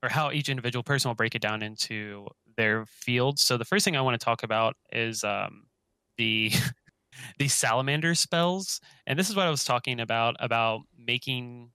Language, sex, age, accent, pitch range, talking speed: English, male, 20-39, American, 110-135 Hz, 190 wpm